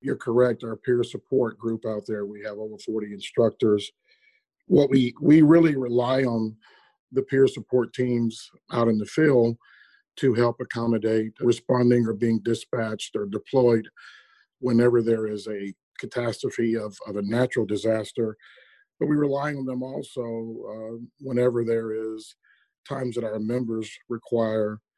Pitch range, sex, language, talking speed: 110-130 Hz, male, English, 145 wpm